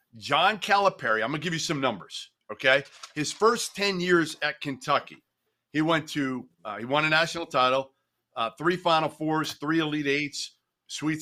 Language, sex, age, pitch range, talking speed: English, male, 50-69, 110-165 Hz, 175 wpm